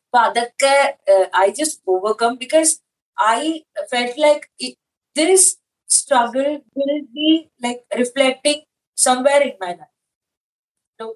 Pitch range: 195-285 Hz